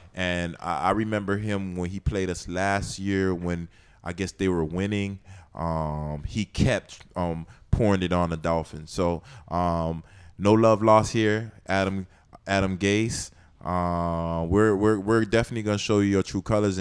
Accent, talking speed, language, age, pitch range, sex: American, 165 wpm, English, 20-39, 85-105 Hz, male